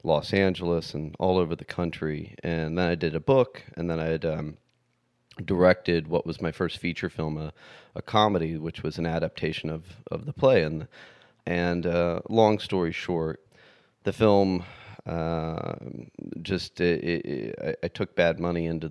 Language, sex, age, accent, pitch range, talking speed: English, male, 30-49, American, 80-90 Hz, 175 wpm